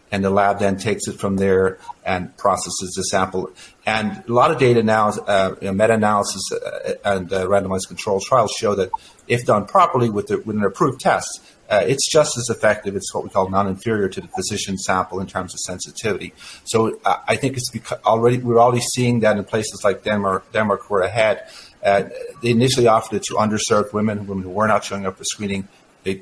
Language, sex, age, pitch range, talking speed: English, male, 50-69, 95-115 Hz, 195 wpm